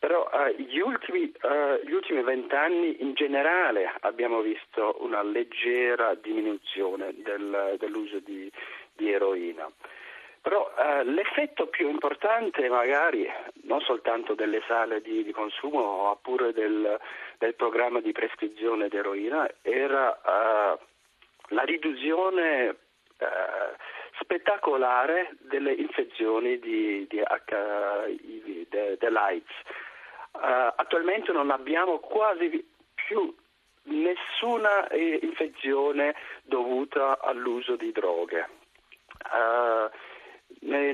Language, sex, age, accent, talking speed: Italian, male, 40-59, native, 90 wpm